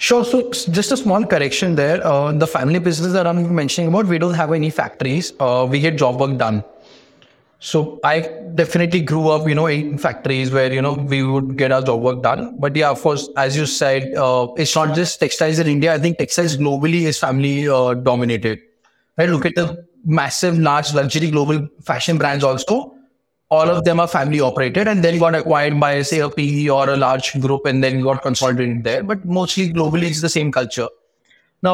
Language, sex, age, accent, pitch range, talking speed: English, male, 20-39, Indian, 135-170 Hz, 205 wpm